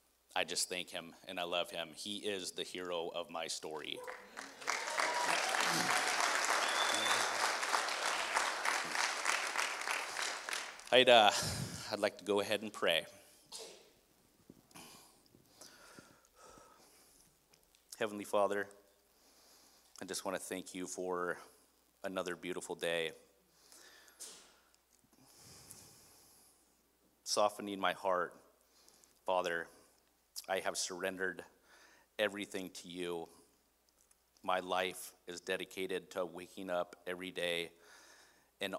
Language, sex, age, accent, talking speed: English, male, 30-49, American, 85 wpm